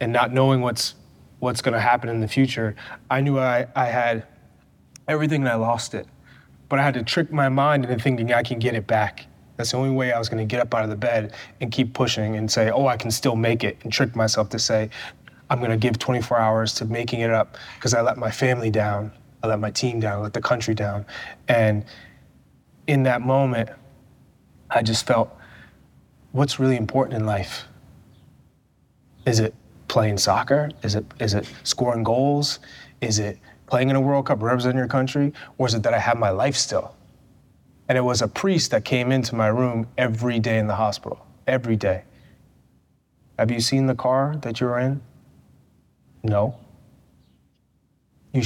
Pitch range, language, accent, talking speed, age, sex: 110-130 Hz, English, American, 195 wpm, 20-39, male